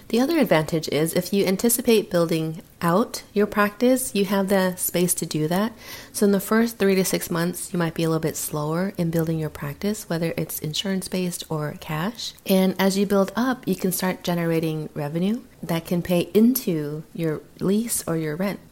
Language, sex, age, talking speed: English, female, 30-49, 195 wpm